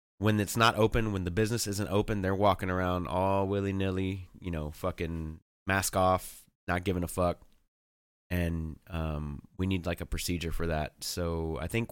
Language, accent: English, American